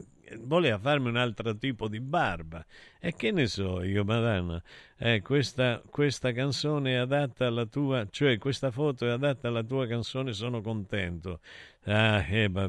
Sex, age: male, 50-69